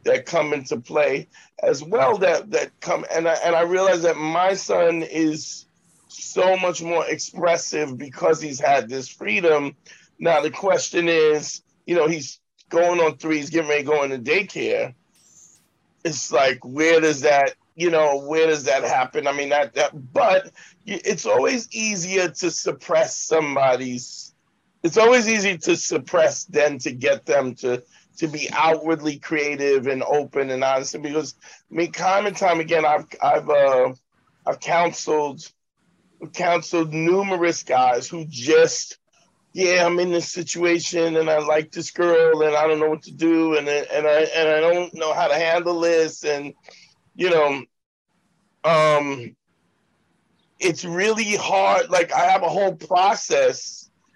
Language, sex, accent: English, male, American